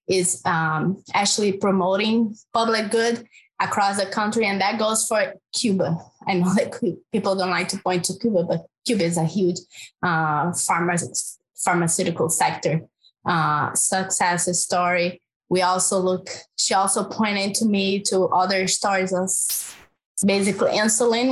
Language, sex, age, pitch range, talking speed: English, female, 20-39, 180-225 Hz, 140 wpm